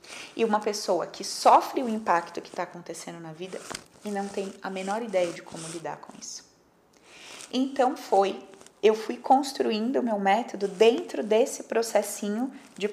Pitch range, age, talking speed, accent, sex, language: 175-220 Hz, 20-39, 165 wpm, Brazilian, female, Portuguese